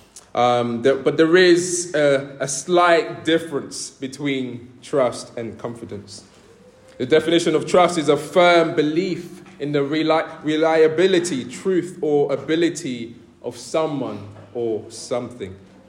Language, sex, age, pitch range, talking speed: English, male, 20-39, 120-165 Hz, 115 wpm